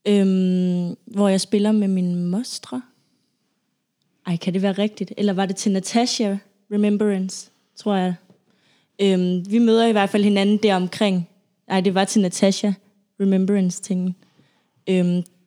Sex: female